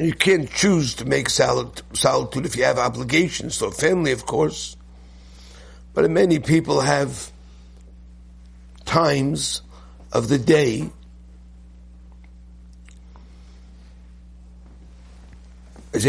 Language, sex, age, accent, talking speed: English, male, 60-79, American, 90 wpm